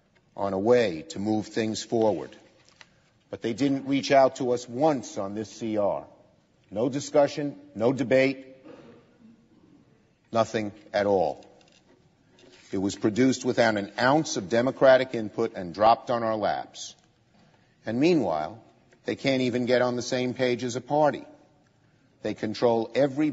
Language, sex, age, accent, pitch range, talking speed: English, male, 50-69, American, 105-130 Hz, 140 wpm